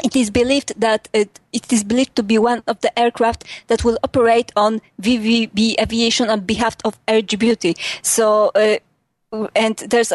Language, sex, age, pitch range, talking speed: English, female, 20-39, 220-255 Hz, 170 wpm